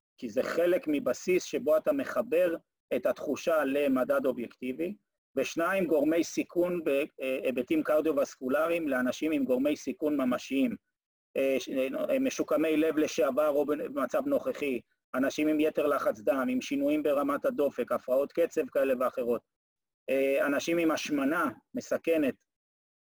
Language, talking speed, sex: Hebrew, 115 wpm, male